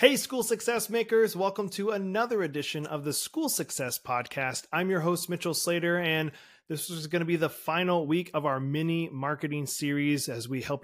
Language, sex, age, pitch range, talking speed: English, male, 30-49, 130-175 Hz, 195 wpm